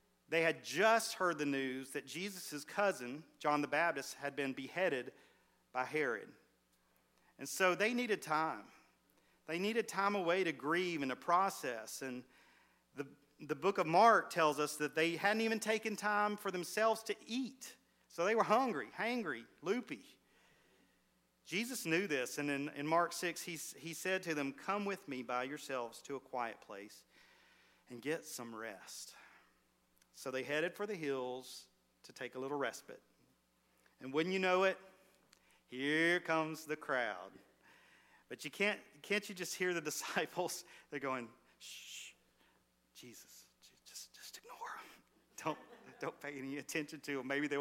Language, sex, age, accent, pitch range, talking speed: English, male, 40-59, American, 130-180 Hz, 160 wpm